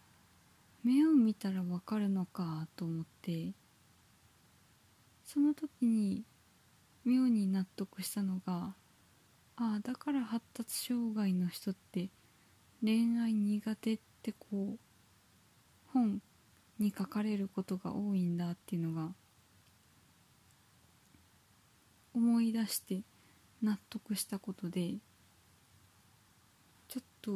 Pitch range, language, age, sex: 165-225 Hz, Japanese, 20-39, female